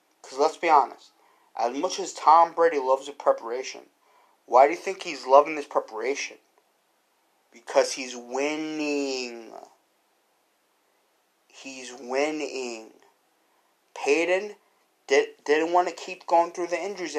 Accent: American